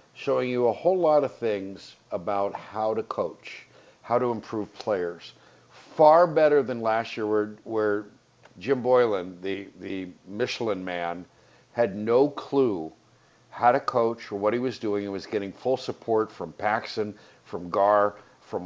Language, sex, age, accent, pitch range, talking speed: English, male, 50-69, American, 100-120 Hz, 160 wpm